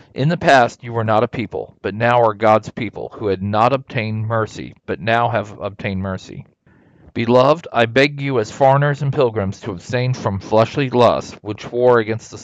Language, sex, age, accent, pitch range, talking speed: English, male, 40-59, American, 110-130 Hz, 195 wpm